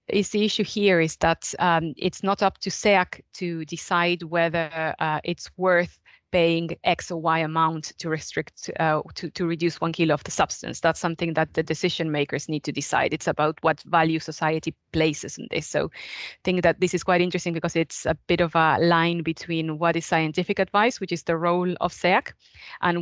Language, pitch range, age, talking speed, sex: English, 160-180 Hz, 20-39, 205 wpm, female